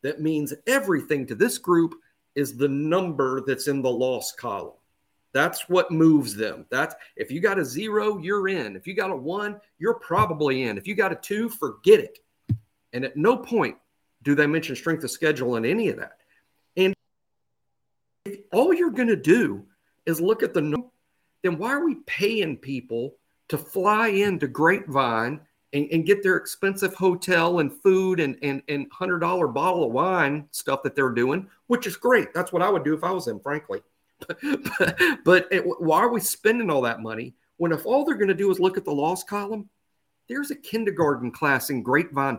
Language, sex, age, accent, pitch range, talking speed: English, male, 50-69, American, 140-205 Hz, 195 wpm